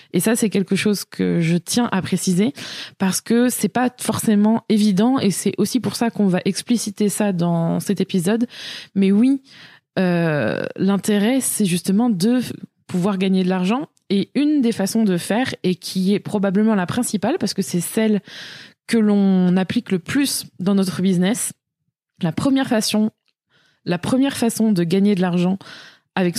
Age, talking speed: 20-39, 170 wpm